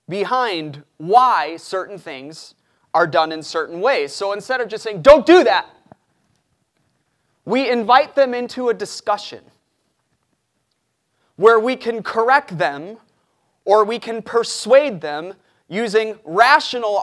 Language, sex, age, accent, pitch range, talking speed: English, male, 30-49, American, 160-225 Hz, 125 wpm